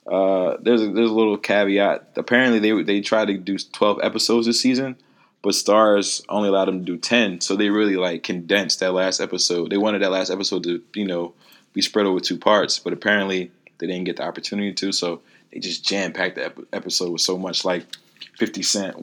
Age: 20-39